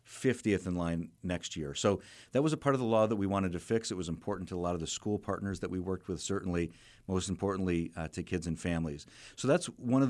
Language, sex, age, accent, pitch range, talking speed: English, male, 40-59, American, 85-105 Hz, 260 wpm